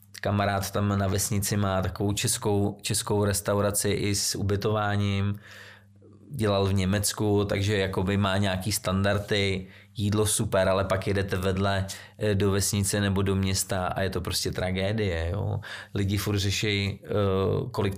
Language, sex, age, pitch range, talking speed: Czech, male, 20-39, 95-105 Hz, 135 wpm